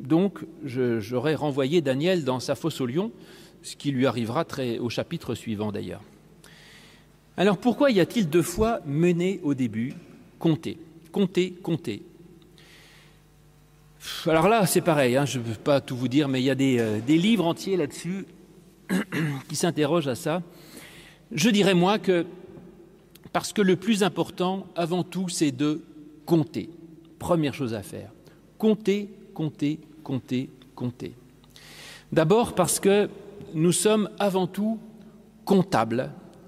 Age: 40-59